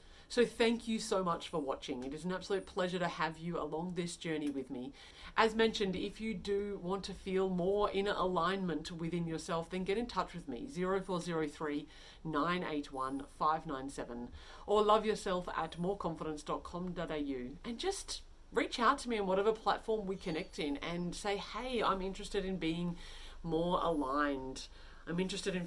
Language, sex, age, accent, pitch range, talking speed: English, female, 40-59, Australian, 155-200 Hz, 165 wpm